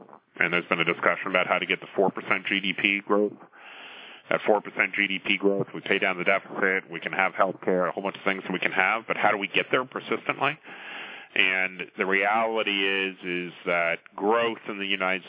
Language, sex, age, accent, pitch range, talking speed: English, male, 30-49, American, 90-105 Hz, 205 wpm